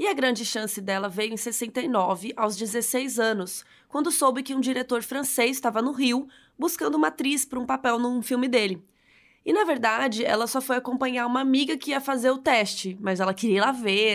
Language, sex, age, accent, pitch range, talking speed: Portuguese, female, 20-39, Brazilian, 210-265 Hz, 210 wpm